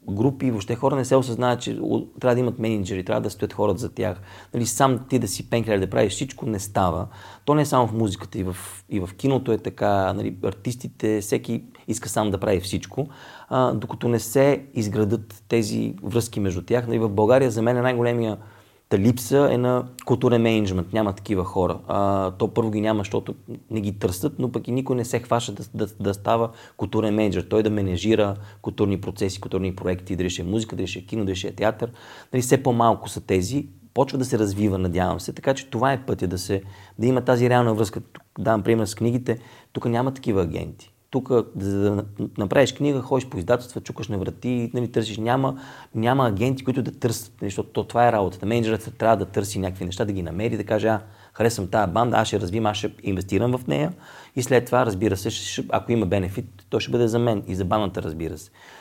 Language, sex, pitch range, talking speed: Bulgarian, male, 100-125 Hz, 210 wpm